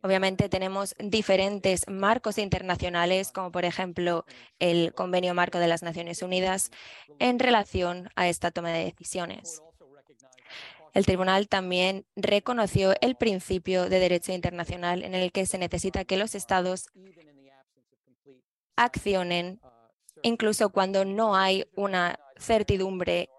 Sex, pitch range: female, 175-195 Hz